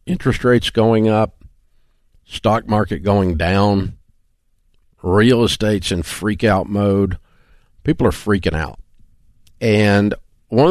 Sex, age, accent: male, 50-69, American